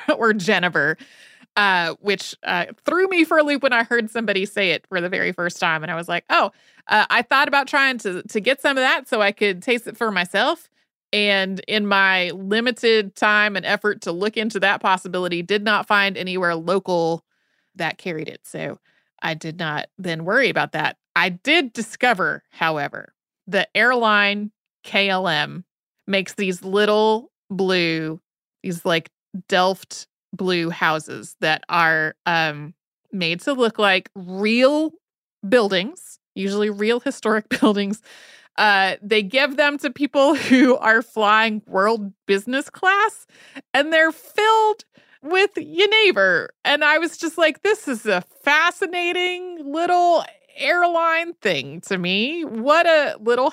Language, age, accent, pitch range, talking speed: English, 30-49, American, 190-280 Hz, 150 wpm